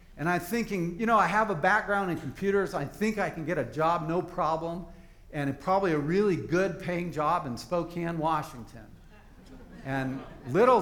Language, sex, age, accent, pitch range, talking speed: English, male, 50-69, American, 155-205 Hz, 175 wpm